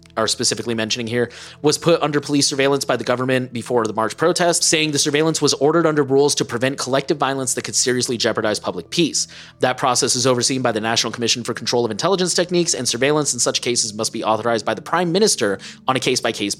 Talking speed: 220 wpm